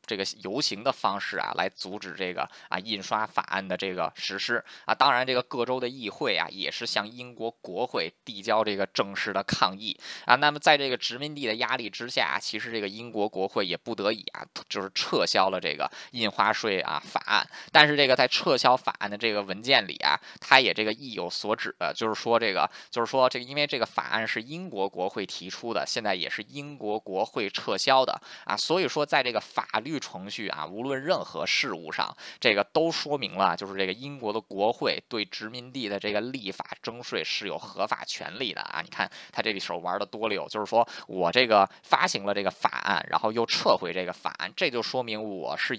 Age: 20-39